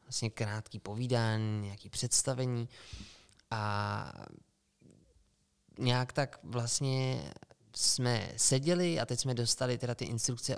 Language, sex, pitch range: Czech, male, 115-135 Hz